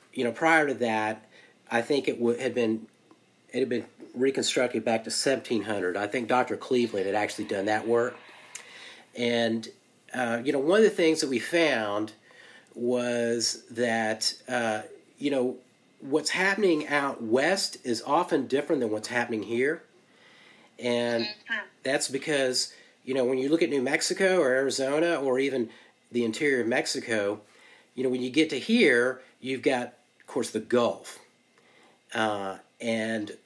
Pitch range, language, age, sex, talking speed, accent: 110-135 Hz, English, 40-59, male, 150 wpm, American